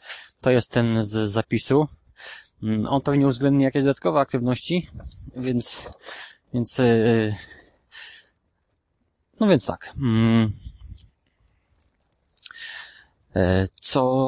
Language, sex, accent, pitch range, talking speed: English, male, Polish, 110-145 Hz, 70 wpm